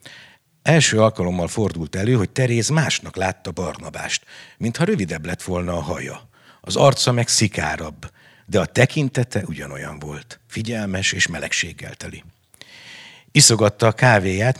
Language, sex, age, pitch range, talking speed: Hungarian, male, 60-79, 90-120 Hz, 125 wpm